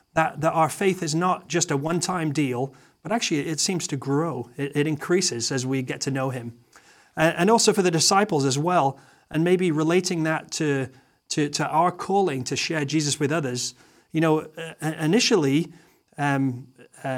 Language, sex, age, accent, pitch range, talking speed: English, male, 30-49, British, 135-175 Hz, 180 wpm